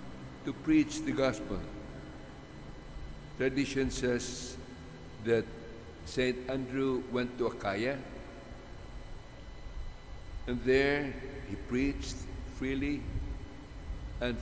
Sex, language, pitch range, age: male, English, 100-130 Hz, 60-79